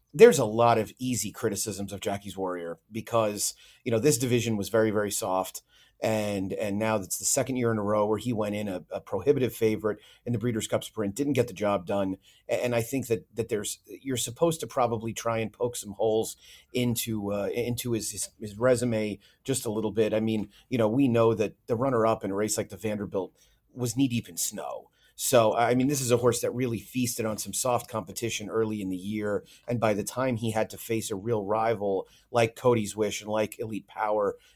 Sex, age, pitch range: male, 30-49, 105-120 Hz